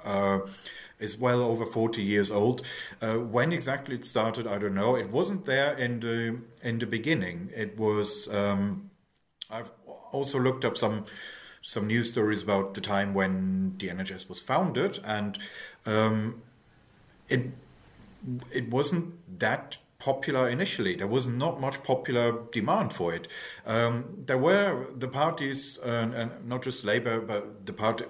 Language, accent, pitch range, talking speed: English, German, 100-125 Hz, 155 wpm